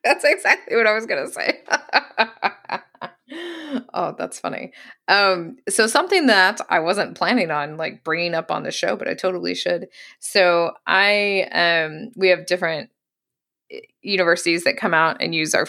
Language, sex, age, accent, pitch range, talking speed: English, female, 20-39, American, 160-220 Hz, 165 wpm